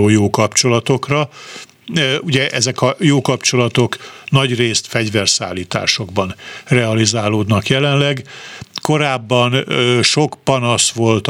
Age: 50-69